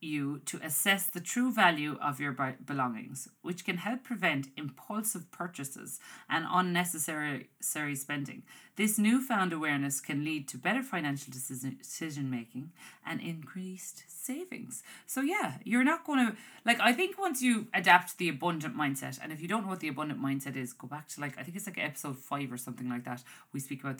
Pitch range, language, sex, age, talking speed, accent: 140-210 Hz, English, female, 30-49, 185 wpm, Irish